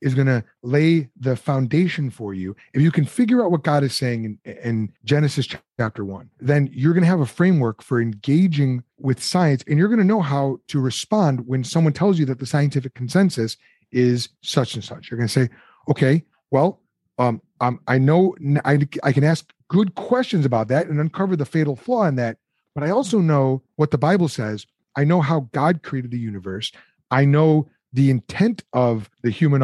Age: 30-49